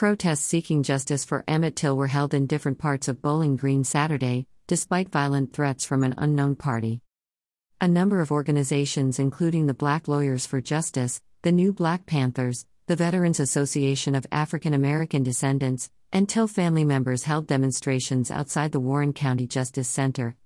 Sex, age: female, 50-69